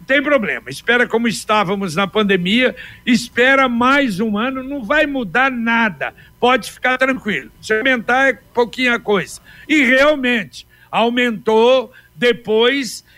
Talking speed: 125 wpm